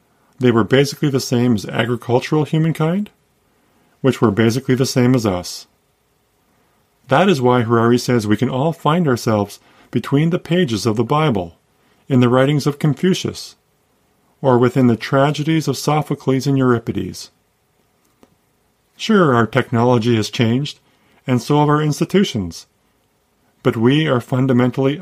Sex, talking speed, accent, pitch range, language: male, 140 wpm, American, 110-145 Hz, English